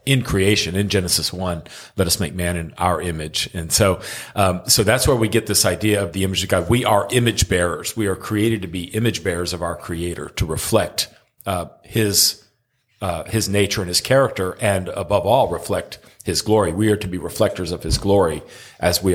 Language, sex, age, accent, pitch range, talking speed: English, male, 40-59, American, 95-110 Hz, 210 wpm